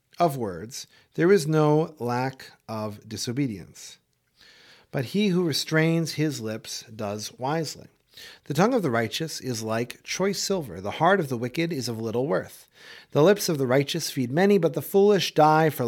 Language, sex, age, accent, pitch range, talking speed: English, male, 40-59, American, 120-170 Hz, 175 wpm